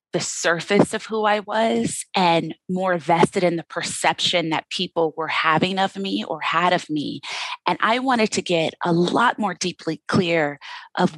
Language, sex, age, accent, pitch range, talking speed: English, female, 30-49, American, 165-195 Hz, 175 wpm